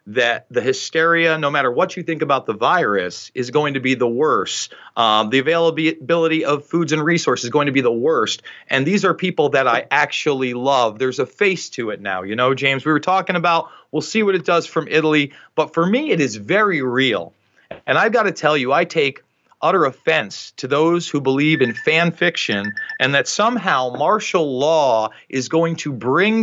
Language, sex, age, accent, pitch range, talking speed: English, male, 40-59, American, 145-205 Hz, 205 wpm